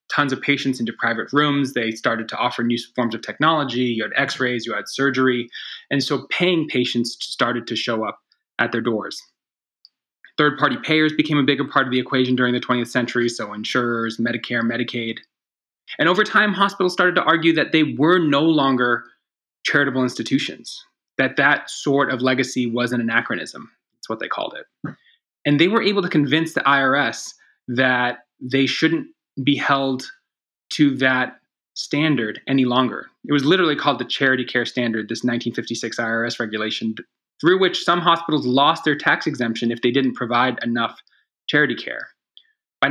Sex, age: male, 20-39